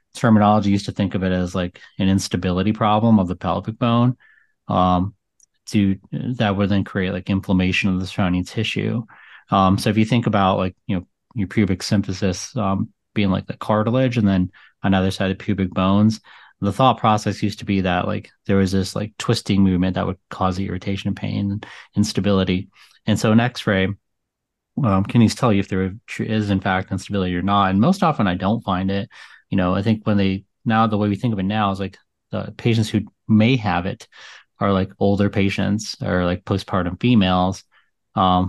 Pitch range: 95-110 Hz